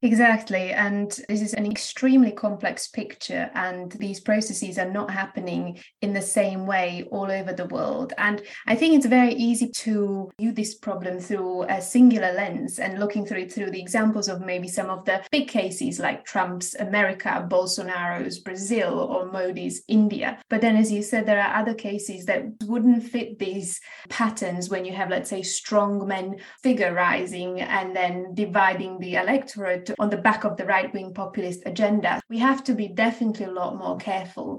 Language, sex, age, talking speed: English, female, 20-39, 180 wpm